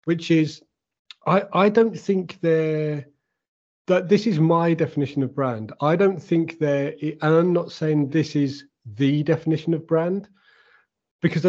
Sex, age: male, 30-49